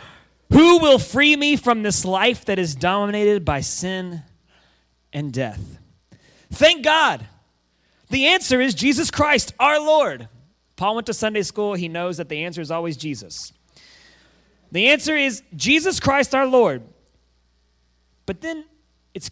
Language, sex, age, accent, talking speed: English, male, 30-49, American, 145 wpm